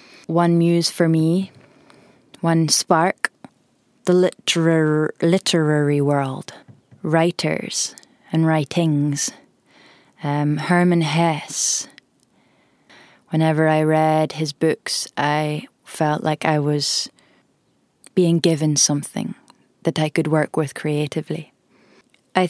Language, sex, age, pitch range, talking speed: English, female, 20-39, 155-175 Hz, 95 wpm